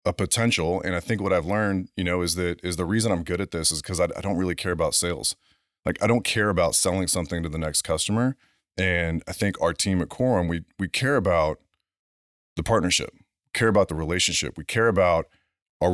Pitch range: 80-95 Hz